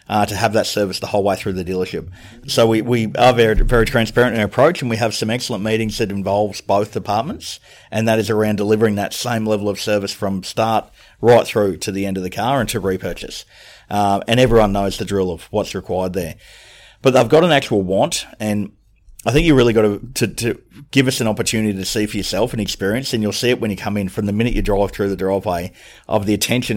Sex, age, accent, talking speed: male, 30-49, Australian, 240 wpm